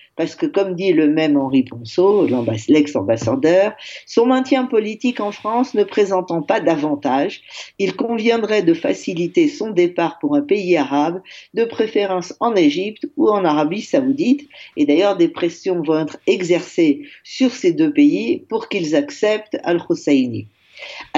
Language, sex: French, female